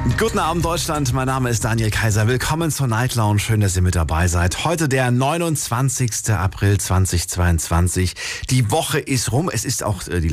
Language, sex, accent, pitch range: German, male, German, 90-125 Hz